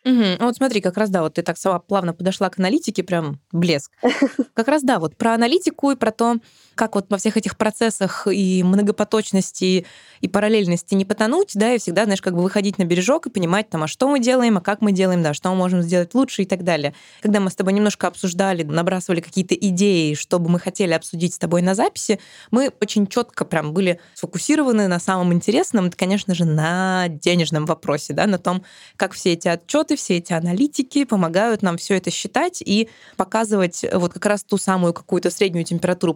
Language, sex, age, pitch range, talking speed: Russian, female, 20-39, 180-220 Hz, 200 wpm